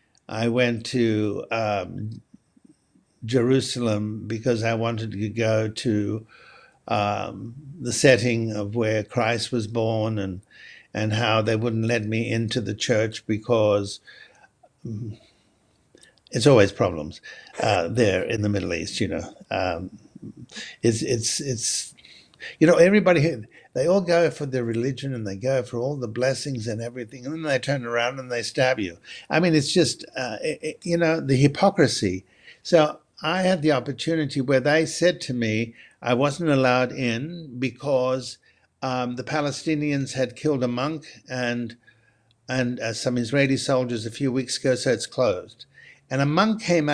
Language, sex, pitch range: English, male, 110-140 Hz